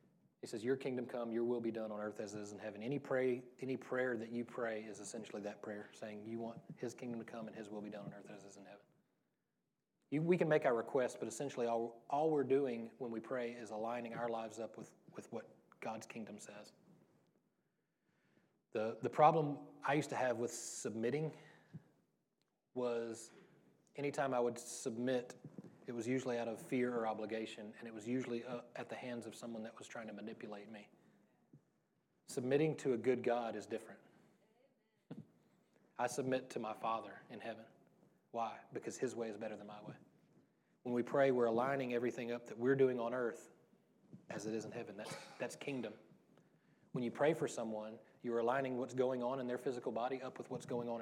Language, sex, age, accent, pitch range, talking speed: English, male, 30-49, American, 115-130 Hz, 200 wpm